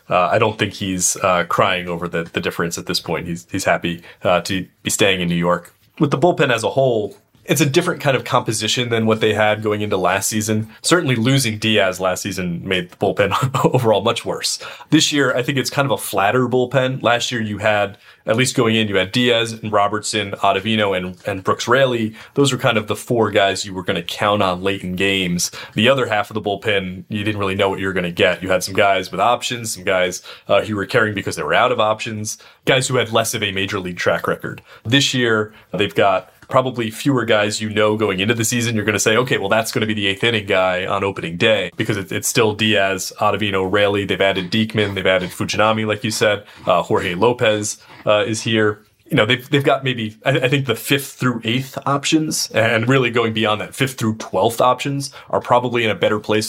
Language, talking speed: English, 240 wpm